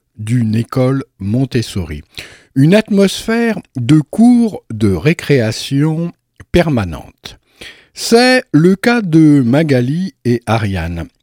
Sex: male